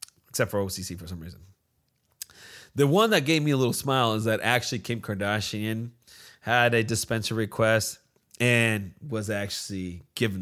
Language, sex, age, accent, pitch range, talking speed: English, male, 30-49, American, 110-170 Hz, 155 wpm